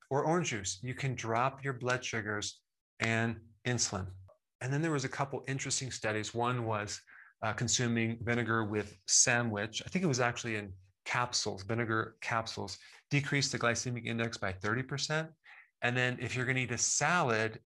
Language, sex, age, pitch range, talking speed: English, male, 30-49, 115-140 Hz, 170 wpm